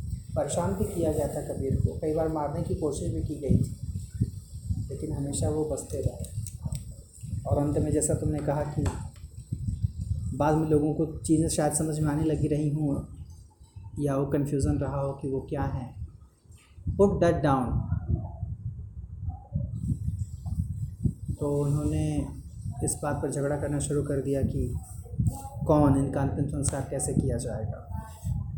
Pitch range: 95-140 Hz